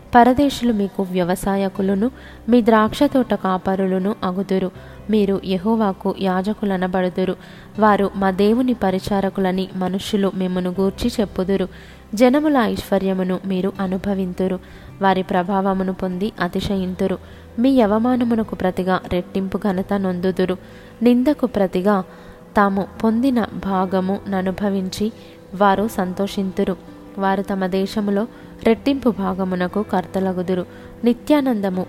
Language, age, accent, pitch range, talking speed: Telugu, 20-39, native, 185-215 Hz, 90 wpm